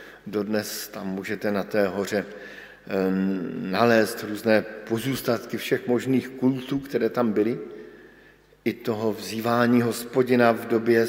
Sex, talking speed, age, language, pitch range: male, 115 wpm, 50-69, Slovak, 115-135 Hz